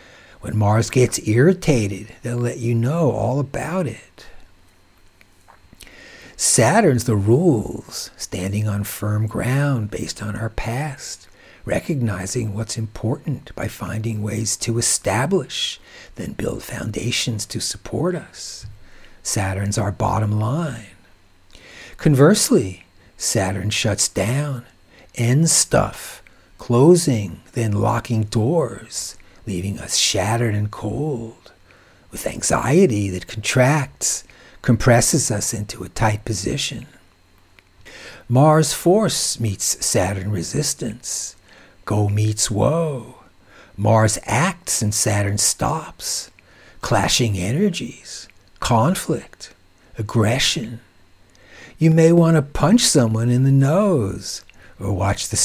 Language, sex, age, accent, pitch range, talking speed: English, male, 60-79, American, 100-125 Hz, 100 wpm